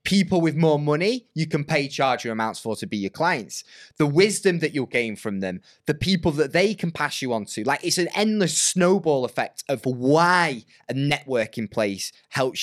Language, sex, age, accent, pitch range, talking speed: English, male, 20-39, British, 135-210 Hz, 200 wpm